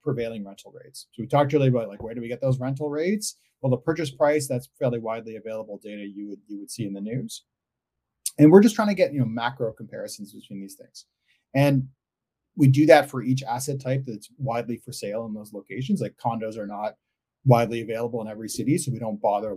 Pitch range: 115-155 Hz